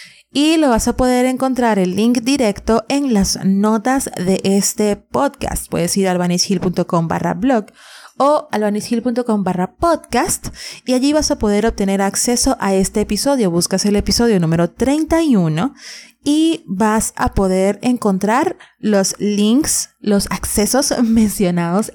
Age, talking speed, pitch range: 30-49, 135 wpm, 185-235 Hz